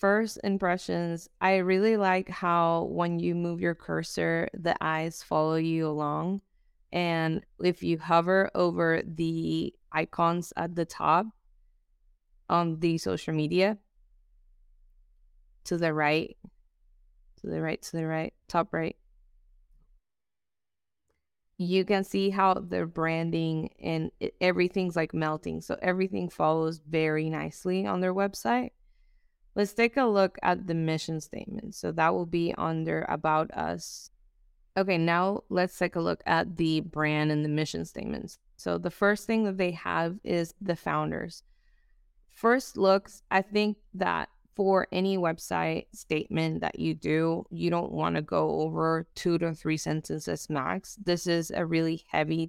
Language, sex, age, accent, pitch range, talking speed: English, female, 20-39, American, 155-185 Hz, 145 wpm